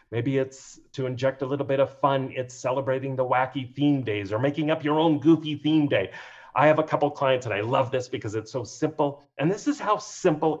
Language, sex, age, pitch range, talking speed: English, male, 40-59, 120-155 Hz, 240 wpm